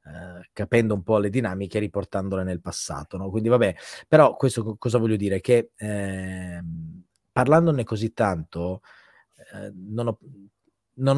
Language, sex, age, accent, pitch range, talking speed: Italian, male, 30-49, native, 95-120 Hz, 145 wpm